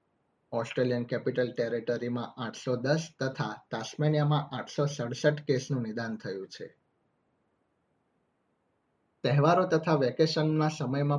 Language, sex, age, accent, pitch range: Gujarati, male, 30-49, native, 125-145 Hz